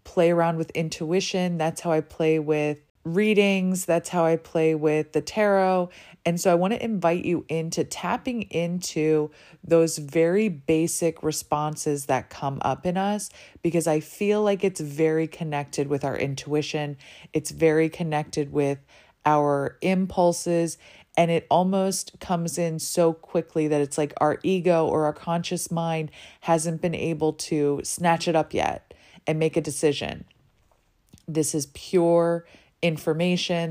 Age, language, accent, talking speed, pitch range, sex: 20-39, English, American, 150 wpm, 155-180 Hz, female